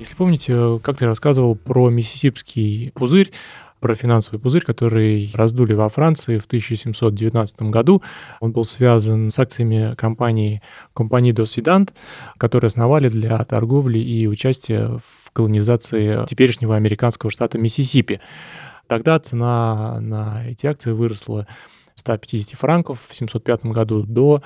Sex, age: male, 20-39